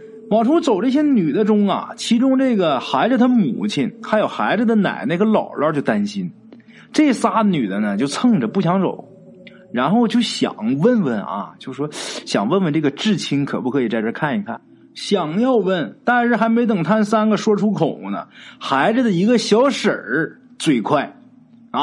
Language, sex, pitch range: Chinese, male, 195-240 Hz